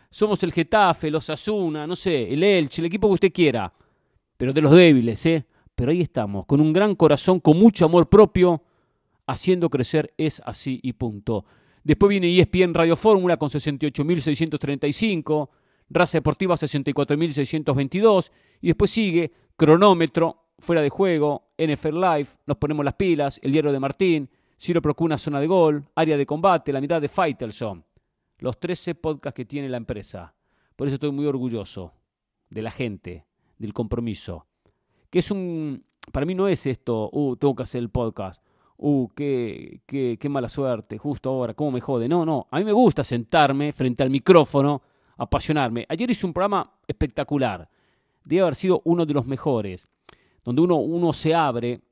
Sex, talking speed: male, 170 wpm